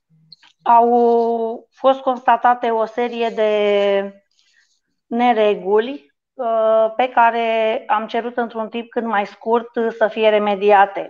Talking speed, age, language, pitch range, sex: 105 wpm, 30-49, Romanian, 210-235 Hz, female